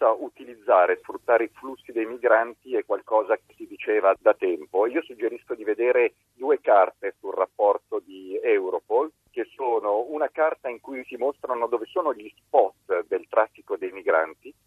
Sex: male